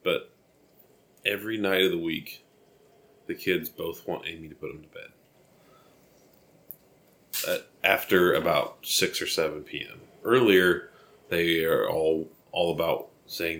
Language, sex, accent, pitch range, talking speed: English, male, American, 80-100 Hz, 130 wpm